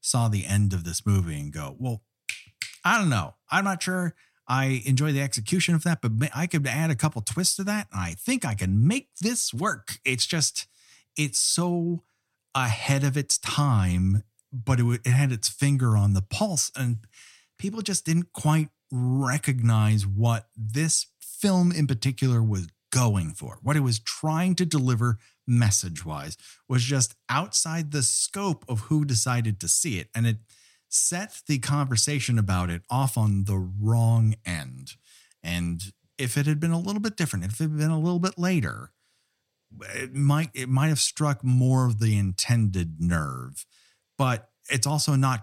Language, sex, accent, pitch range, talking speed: English, male, American, 105-145 Hz, 170 wpm